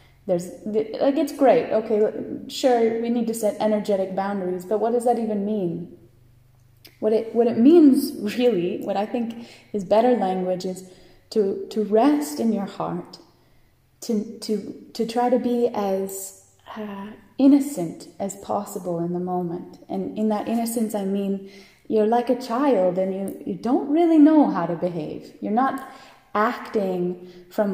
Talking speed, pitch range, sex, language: 160 wpm, 195-260 Hz, female, English